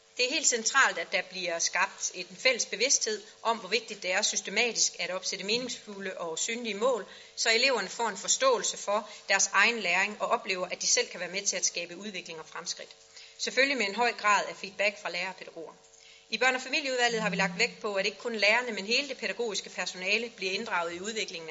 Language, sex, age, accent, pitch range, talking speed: Danish, female, 30-49, native, 195-240 Hz, 220 wpm